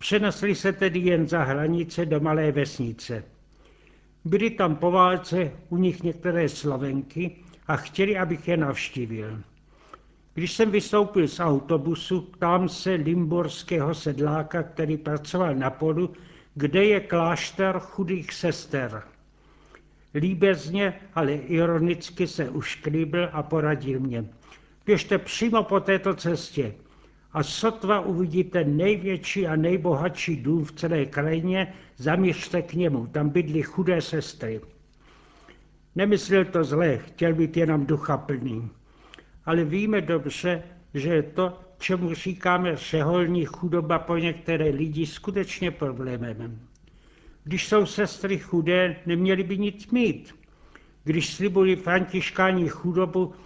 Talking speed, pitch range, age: 120 wpm, 155-185 Hz, 70-89